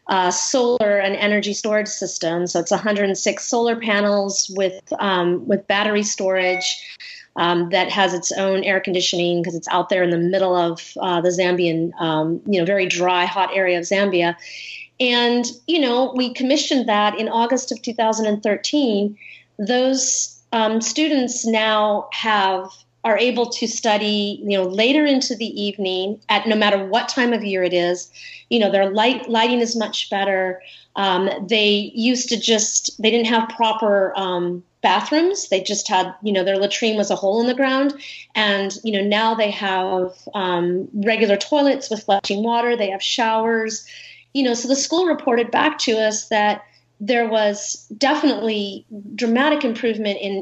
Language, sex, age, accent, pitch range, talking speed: English, female, 30-49, American, 190-235 Hz, 175 wpm